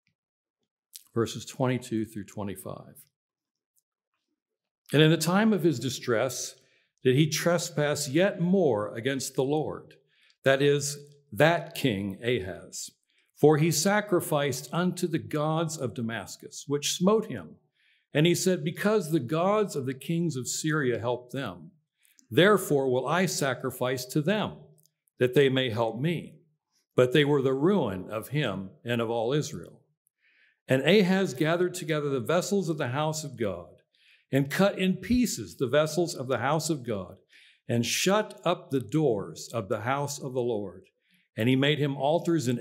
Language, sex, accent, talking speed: English, male, American, 155 wpm